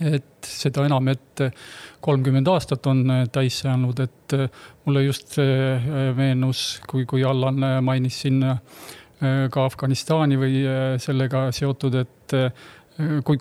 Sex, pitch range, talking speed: male, 130-145 Hz, 110 wpm